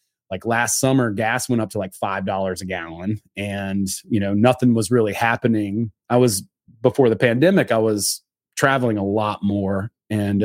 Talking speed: 170 wpm